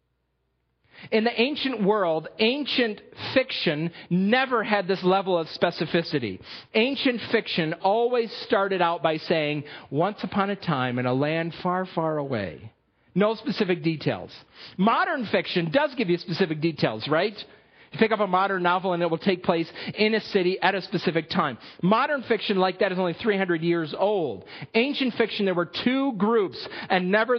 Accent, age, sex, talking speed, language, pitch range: American, 40-59, male, 165 wpm, English, 165-220 Hz